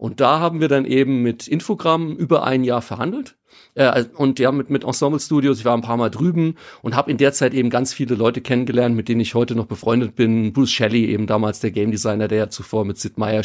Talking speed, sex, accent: 245 wpm, male, German